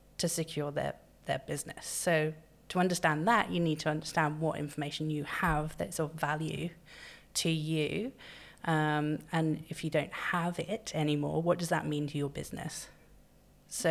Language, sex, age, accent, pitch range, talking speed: English, female, 30-49, British, 155-170 Hz, 165 wpm